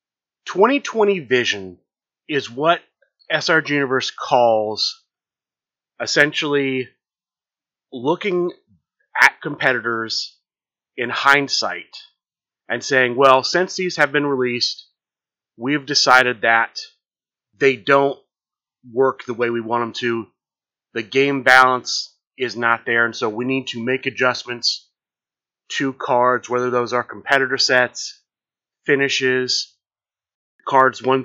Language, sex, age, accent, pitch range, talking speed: English, male, 30-49, American, 120-145 Hz, 110 wpm